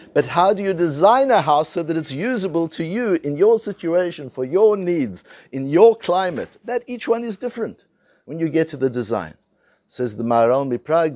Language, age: English, 60-79